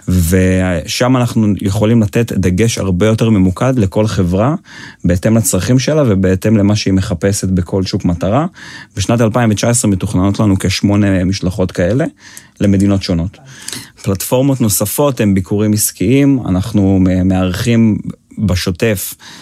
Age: 30-49